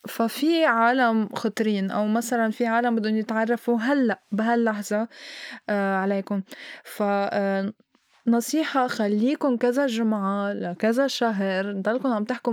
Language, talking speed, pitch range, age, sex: Arabic, 105 wpm, 215-265 Hz, 20-39, female